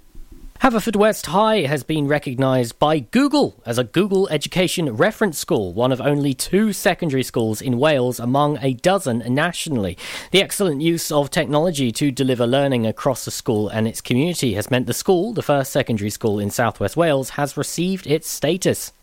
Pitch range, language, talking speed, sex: 120-170 Hz, English, 175 wpm, male